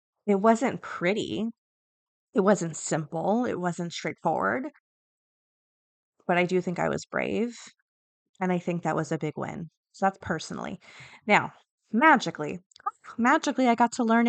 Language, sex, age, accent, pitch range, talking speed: English, female, 20-39, American, 170-230 Hz, 145 wpm